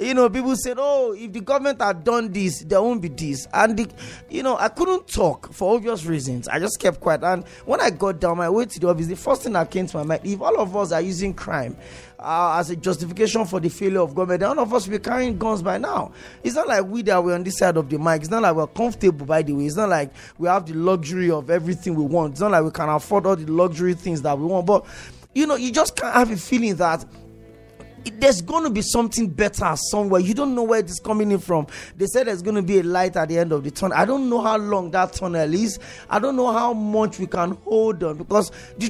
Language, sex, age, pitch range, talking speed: English, male, 20-39, 175-230 Hz, 270 wpm